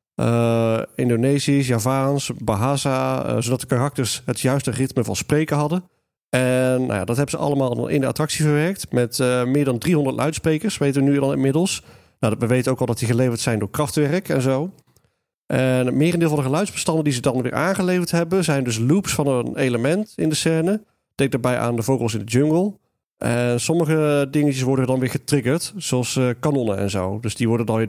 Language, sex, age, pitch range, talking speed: Dutch, male, 40-59, 115-145 Hz, 205 wpm